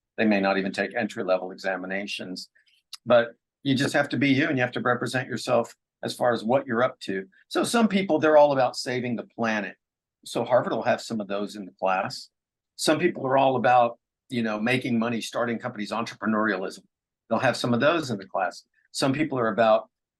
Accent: American